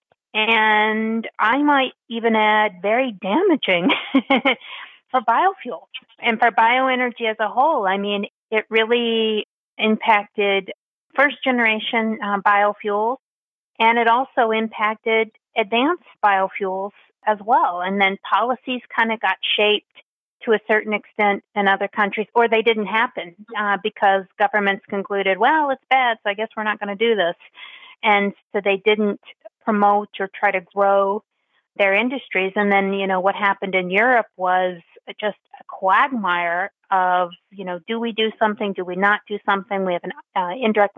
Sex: female